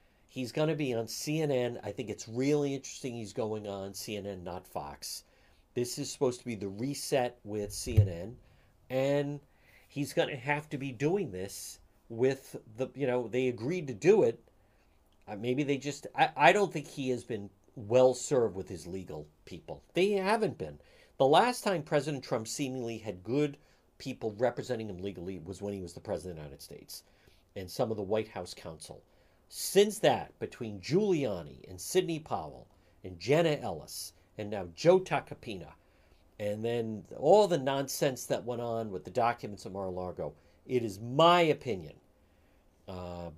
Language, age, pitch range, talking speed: English, 50-69, 95-145 Hz, 175 wpm